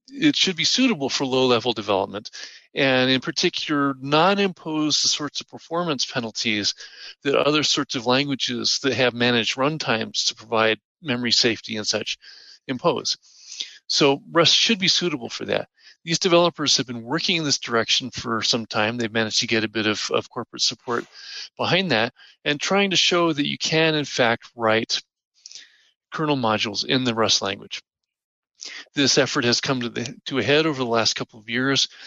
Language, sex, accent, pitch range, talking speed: English, male, American, 115-150 Hz, 175 wpm